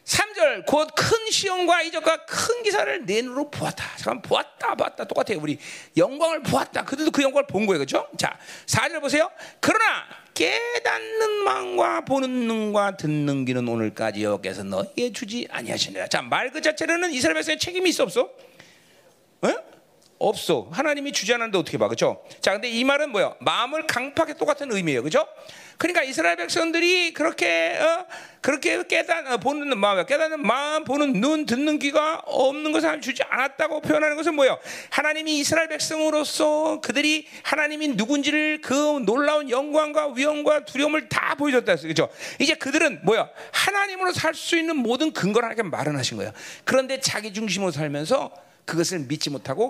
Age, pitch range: 40-59, 230-330 Hz